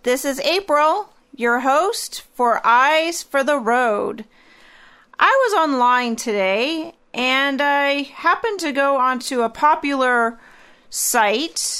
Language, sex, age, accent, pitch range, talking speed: English, female, 40-59, American, 235-320 Hz, 115 wpm